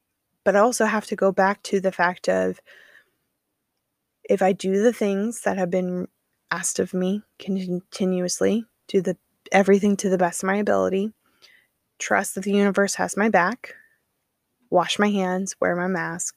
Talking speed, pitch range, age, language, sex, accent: 165 wpm, 180-200 Hz, 20-39, English, female, American